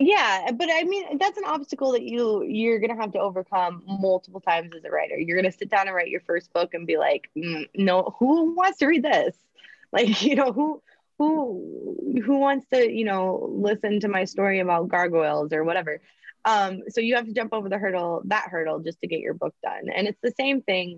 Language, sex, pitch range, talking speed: English, female, 170-220 Hz, 220 wpm